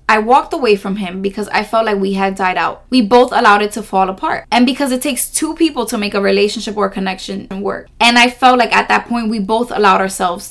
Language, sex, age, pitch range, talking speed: English, female, 20-39, 200-250 Hz, 250 wpm